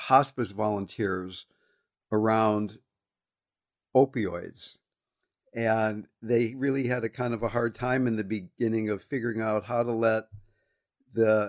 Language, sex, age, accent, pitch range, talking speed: English, male, 50-69, American, 105-130 Hz, 125 wpm